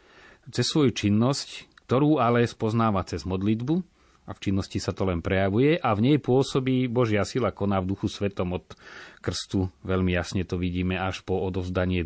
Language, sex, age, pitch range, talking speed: Slovak, male, 30-49, 90-110 Hz, 170 wpm